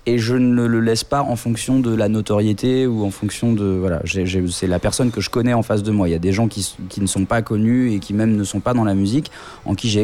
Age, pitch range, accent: 20-39, 105-140 Hz, French